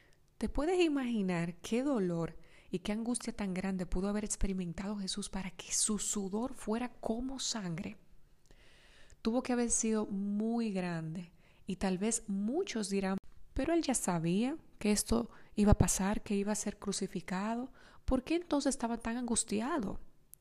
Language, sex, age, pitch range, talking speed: English, female, 30-49, 190-235 Hz, 155 wpm